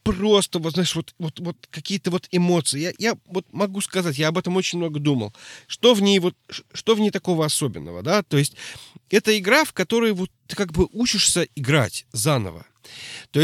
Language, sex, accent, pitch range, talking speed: Russian, male, native, 135-195 Hz, 195 wpm